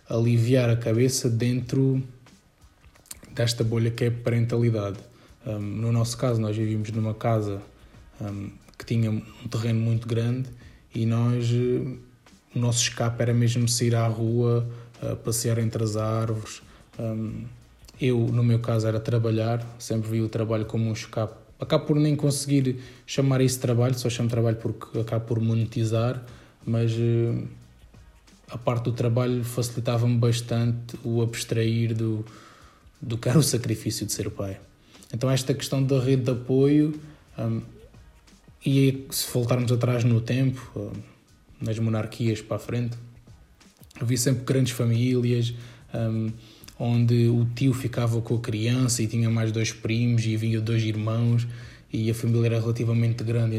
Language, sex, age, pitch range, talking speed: Portuguese, male, 20-39, 110-125 Hz, 150 wpm